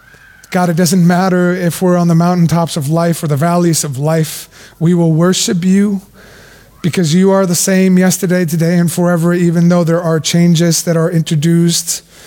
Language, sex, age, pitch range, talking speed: English, male, 20-39, 140-170 Hz, 180 wpm